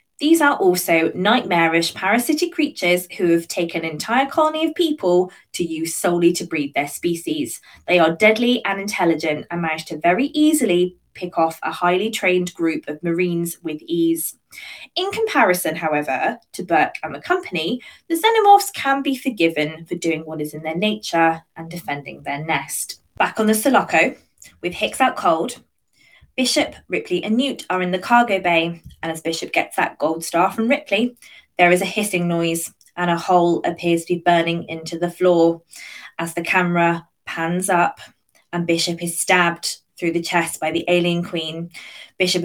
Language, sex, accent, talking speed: English, female, British, 175 wpm